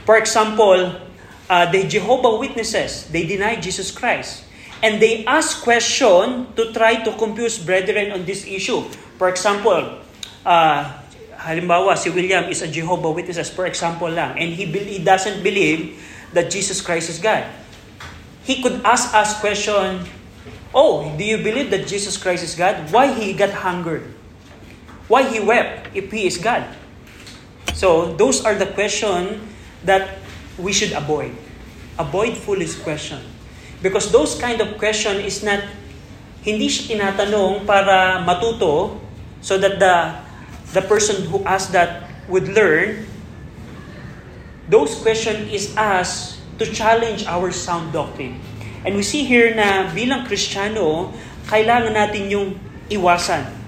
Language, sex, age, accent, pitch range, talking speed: Filipino, male, 20-39, native, 180-215 Hz, 140 wpm